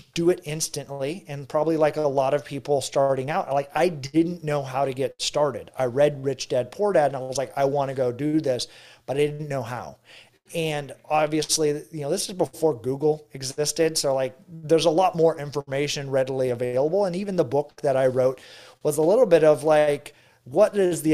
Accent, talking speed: American, 215 wpm